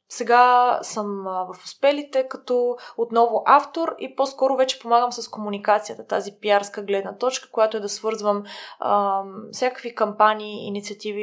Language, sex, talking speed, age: Bulgarian, female, 140 wpm, 20-39